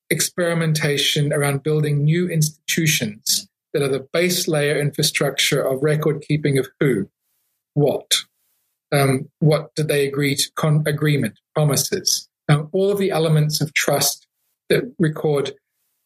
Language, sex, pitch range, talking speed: English, male, 140-160 Hz, 130 wpm